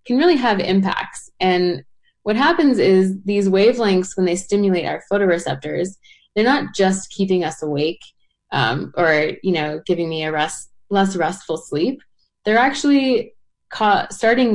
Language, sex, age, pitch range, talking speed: English, female, 20-39, 170-205 Hz, 150 wpm